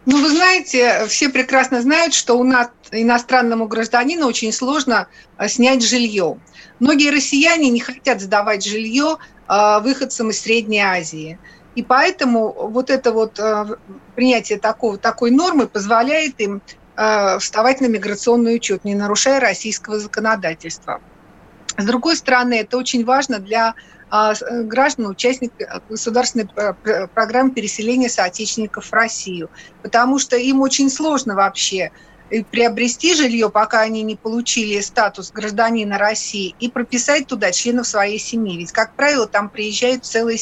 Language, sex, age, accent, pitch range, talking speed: Russian, female, 50-69, native, 210-255 Hz, 130 wpm